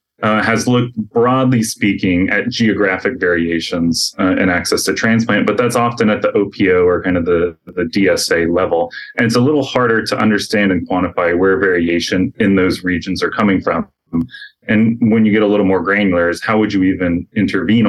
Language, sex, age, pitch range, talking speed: English, male, 20-39, 90-115 Hz, 190 wpm